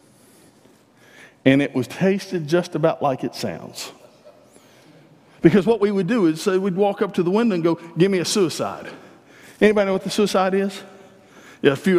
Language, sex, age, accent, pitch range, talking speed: English, male, 50-69, American, 150-195 Hz, 185 wpm